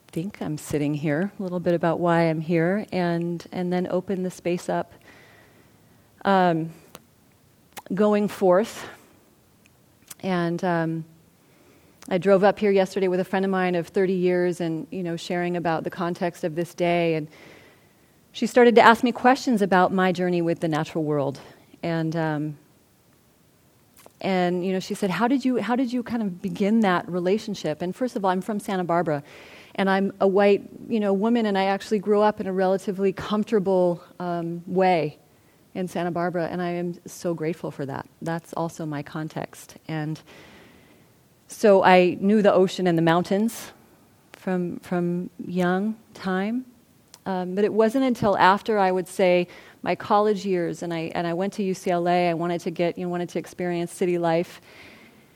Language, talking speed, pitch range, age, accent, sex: English, 175 wpm, 170-200 Hz, 30-49, American, female